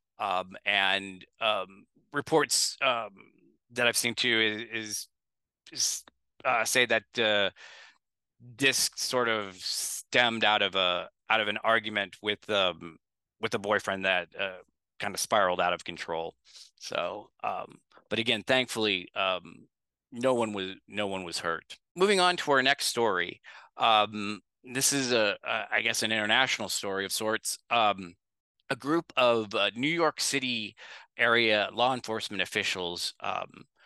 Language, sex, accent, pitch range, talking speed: English, male, American, 100-125 Hz, 145 wpm